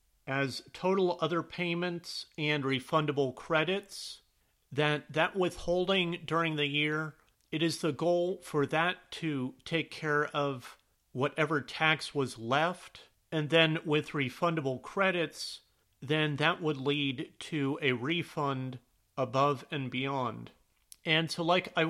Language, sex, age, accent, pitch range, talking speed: English, male, 40-59, American, 140-170 Hz, 125 wpm